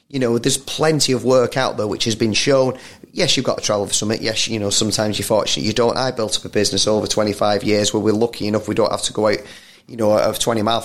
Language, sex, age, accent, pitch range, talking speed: English, male, 30-49, British, 105-125 Hz, 280 wpm